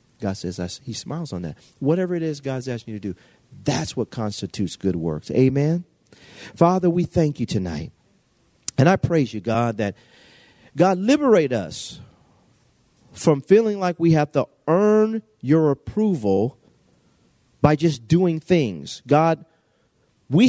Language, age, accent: English, 40-59, American